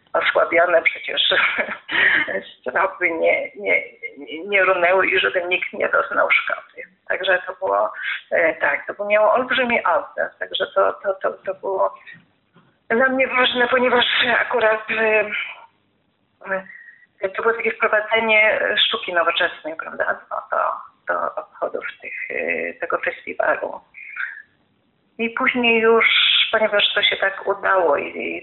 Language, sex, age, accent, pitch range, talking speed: Polish, female, 30-49, native, 180-250 Hz, 115 wpm